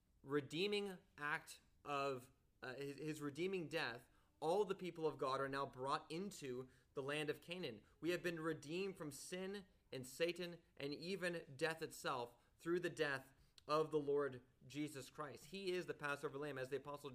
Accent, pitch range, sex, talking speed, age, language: American, 135-175 Hz, male, 170 wpm, 30-49, English